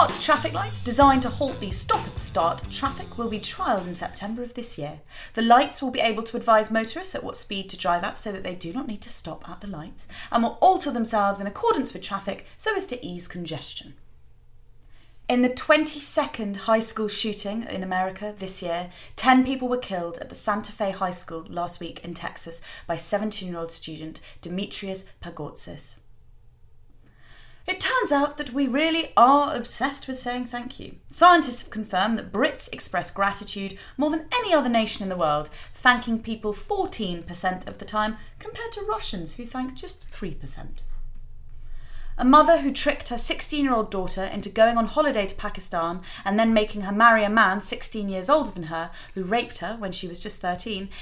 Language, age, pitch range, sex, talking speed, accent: English, 30-49, 185-260 Hz, female, 190 wpm, British